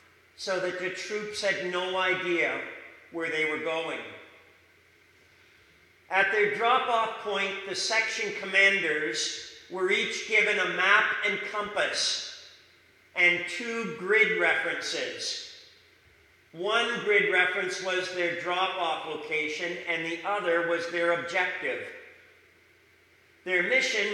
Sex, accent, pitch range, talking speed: male, American, 175-215 Hz, 110 wpm